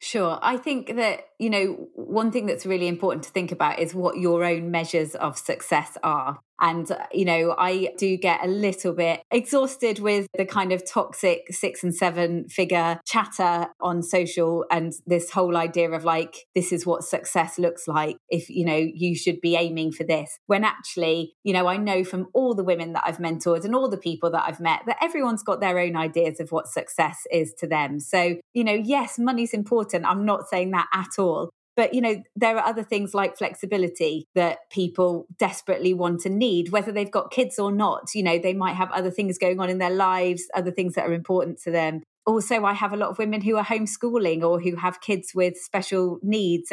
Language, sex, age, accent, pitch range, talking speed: English, female, 20-39, British, 170-210 Hz, 215 wpm